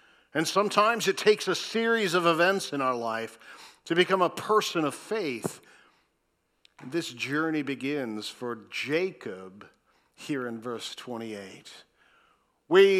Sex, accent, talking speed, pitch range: male, American, 125 wpm, 130-180 Hz